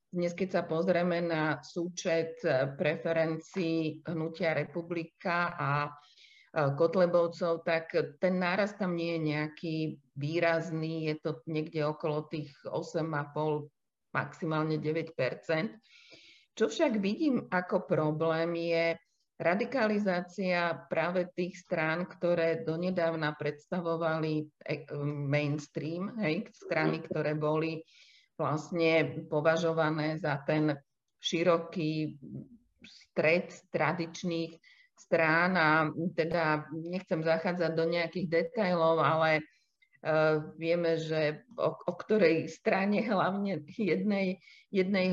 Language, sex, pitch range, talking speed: Slovak, female, 155-180 Hz, 95 wpm